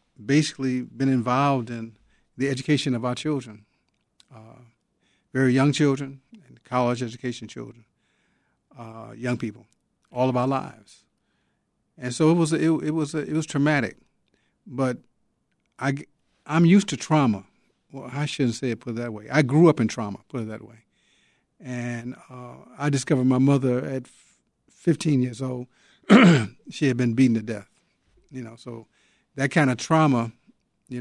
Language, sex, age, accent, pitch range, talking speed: English, male, 50-69, American, 115-145 Hz, 165 wpm